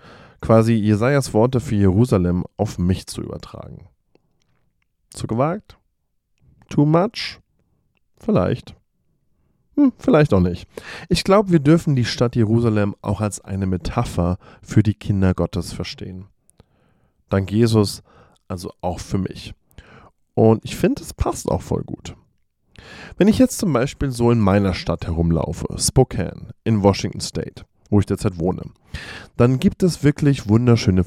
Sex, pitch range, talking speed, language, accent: male, 95-125 Hz, 135 wpm, German, German